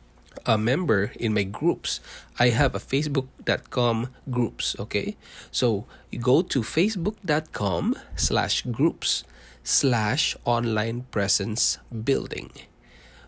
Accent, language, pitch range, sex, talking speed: Filipino, English, 95-130 Hz, male, 100 wpm